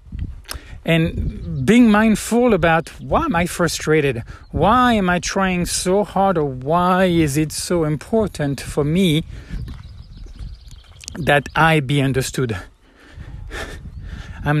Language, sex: English, male